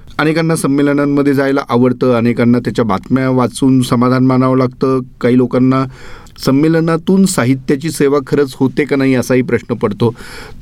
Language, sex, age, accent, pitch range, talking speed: Marathi, male, 40-59, native, 115-145 Hz, 125 wpm